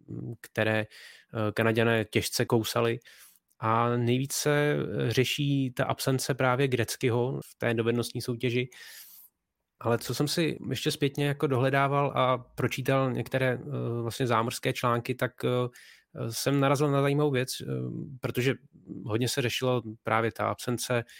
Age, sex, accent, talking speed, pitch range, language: 20-39, male, native, 120 wpm, 115-135 Hz, Czech